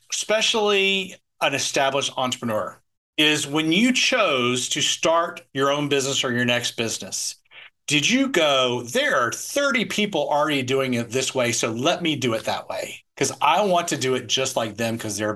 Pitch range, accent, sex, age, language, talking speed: 125-175 Hz, American, male, 40-59, English, 185 wpm